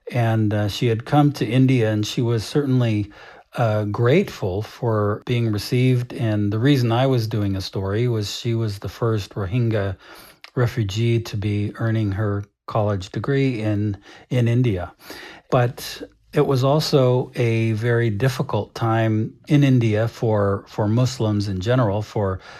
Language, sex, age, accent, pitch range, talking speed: English, male, 50-69, American, 105-125 Hz, 150 wpm